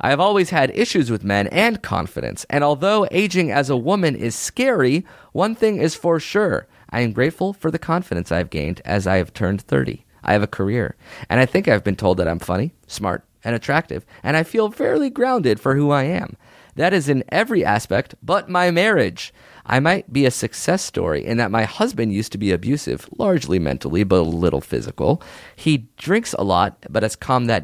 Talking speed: 210 wpm